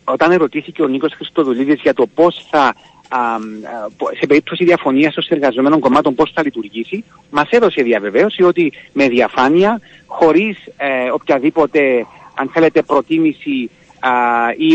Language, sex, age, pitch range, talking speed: Greek, male, 40-59, 125-180 Hz, 120 wpm